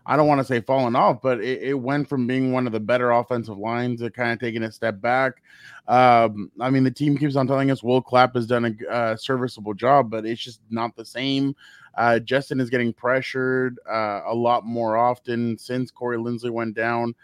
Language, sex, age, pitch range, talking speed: English, male, 20-39, 120-140 Hz, 225 wpm